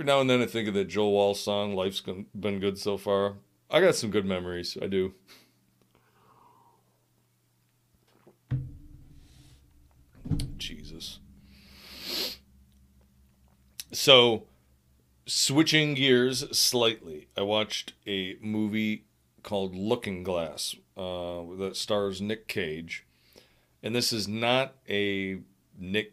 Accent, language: American, English